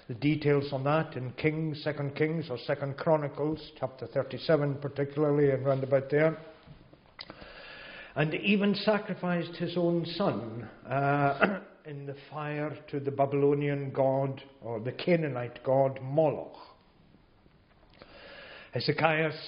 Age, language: 60-79, English